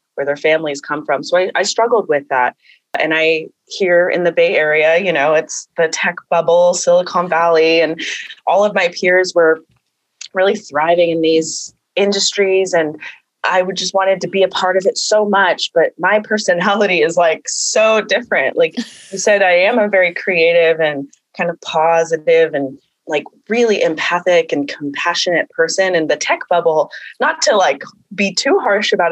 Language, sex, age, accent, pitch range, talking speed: English, female, 20-39, American, 160-210 Hz, 180 wpm